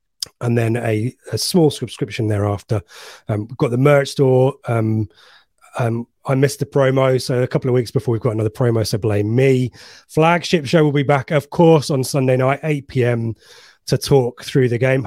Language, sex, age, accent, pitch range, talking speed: English, male, 30-49, British, 115-150 Hz, 195 wpm